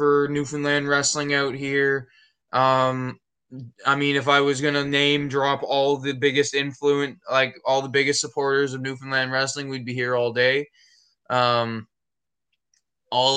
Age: 20-39